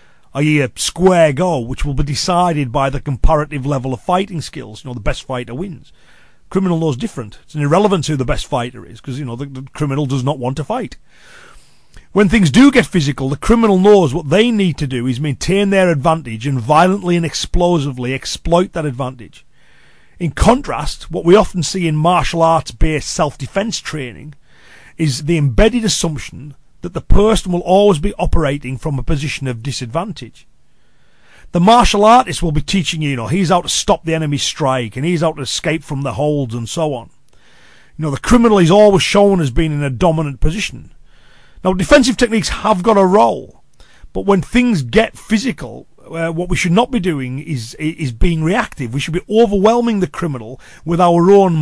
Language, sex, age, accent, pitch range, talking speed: English, male, 40-59, British, 140-190 Hz, 195 wpm